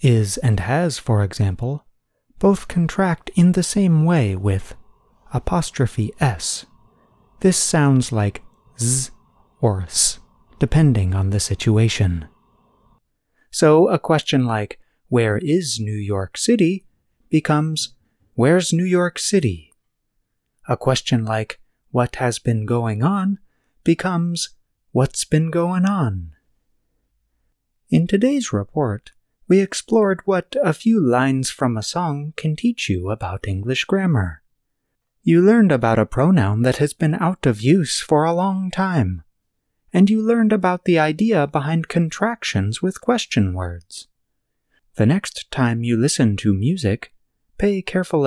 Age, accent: 30-49, American